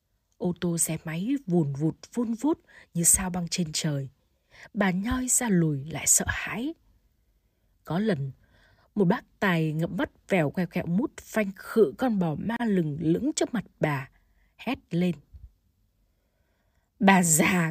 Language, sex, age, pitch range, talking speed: Vietnamese, female, 20-39, 150-210 Hz, 155 wpm